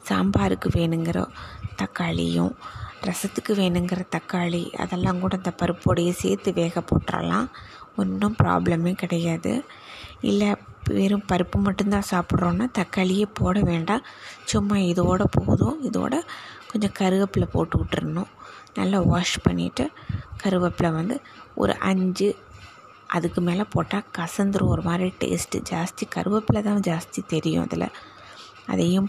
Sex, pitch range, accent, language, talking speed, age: female, 170-210 Hz, native, Tamil, 105 wpm, 20-39